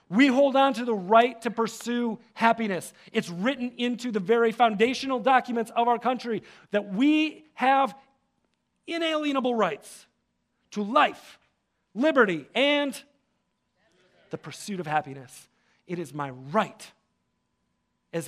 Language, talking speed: English, 120 wpm